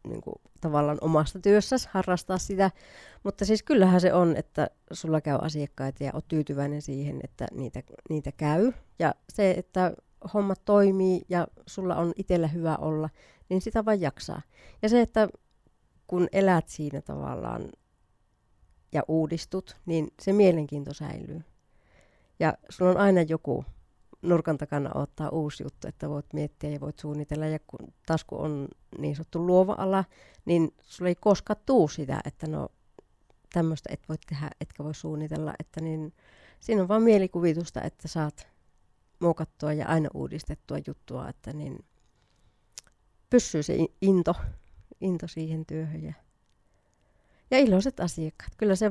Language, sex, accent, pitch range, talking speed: Finnish, female, native, 150-185 Hz, 145 wpm